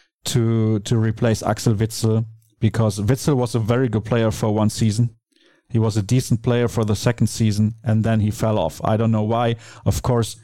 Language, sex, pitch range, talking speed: English, male, 110-125 Hz, 200 wpm